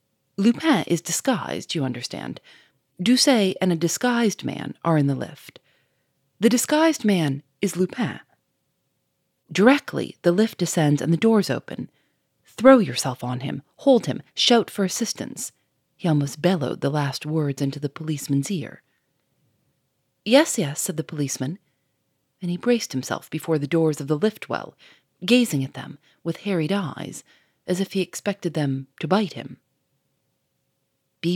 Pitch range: 140-200 Hz